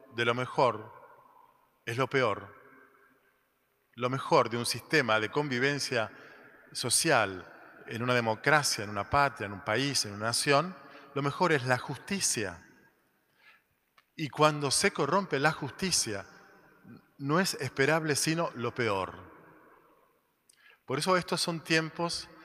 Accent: Argentinian